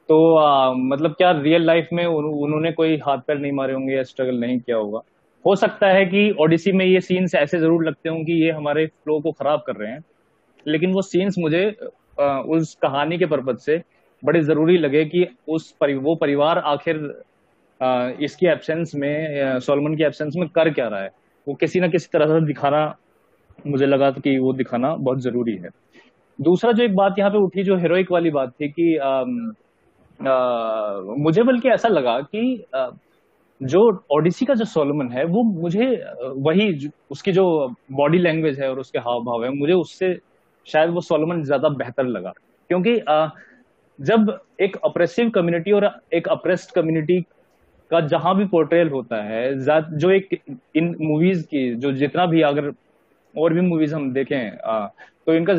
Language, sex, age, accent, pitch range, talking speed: Hindi, male, 20-39, native, 145-180 Hz, 175 wpm